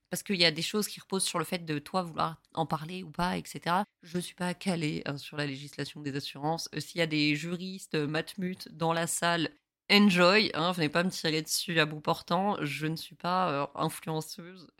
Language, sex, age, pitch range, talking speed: French, female, 20-39, 165-210 Hz, 225 wpm